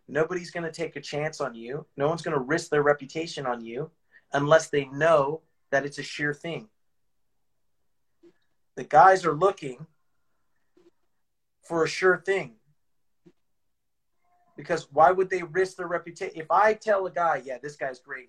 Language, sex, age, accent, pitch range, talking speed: English, male, 30-49, American, 145-175 Hz, 160 wpm